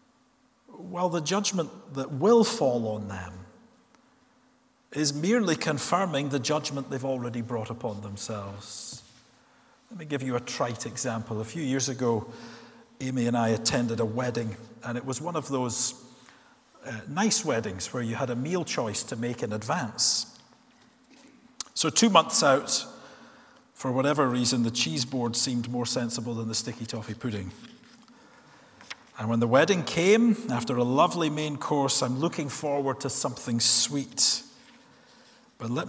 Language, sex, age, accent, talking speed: English, male, 50-69, British, 150 wpm